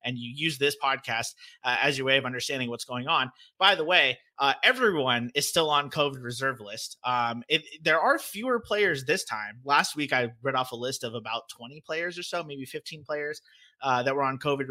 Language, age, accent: English, 30-49, American